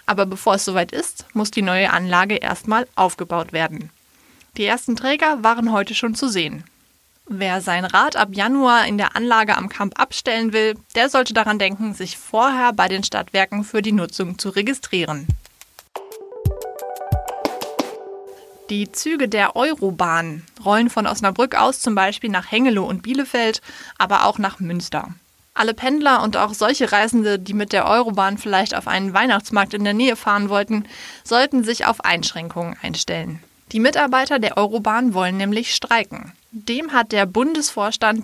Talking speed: 155 wpm